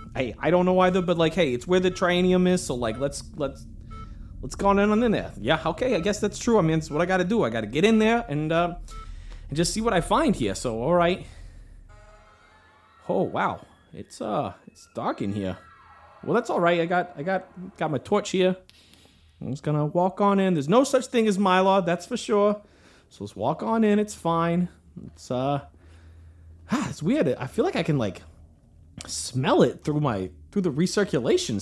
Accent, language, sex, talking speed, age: American, English, male, 215 wpm, 30-49